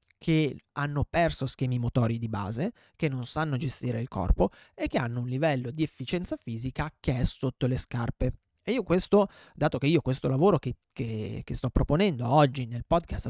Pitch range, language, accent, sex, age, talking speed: 120-155 Hz, Italian, native, male, 30-49, 185 wpm